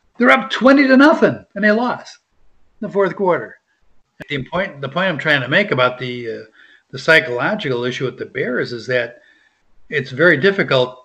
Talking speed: 175 wpm